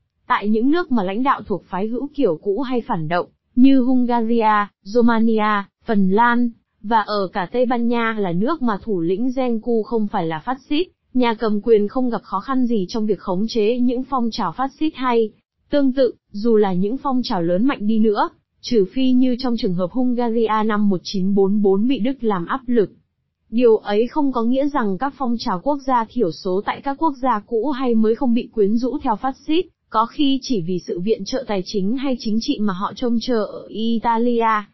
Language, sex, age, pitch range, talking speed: Vietnamese, female, 20-39, 205-255 Hz, 215 wpm